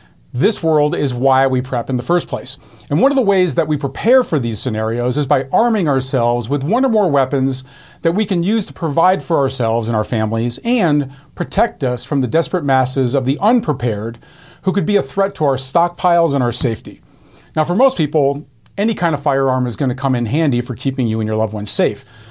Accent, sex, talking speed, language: American, male, 225 wpm, English